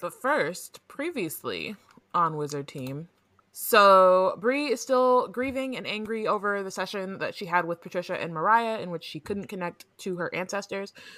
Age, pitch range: 20-39, 170-225 Hz